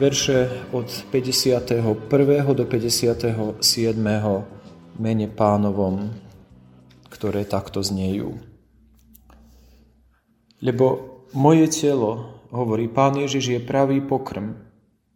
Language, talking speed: Slovak, 75 wpm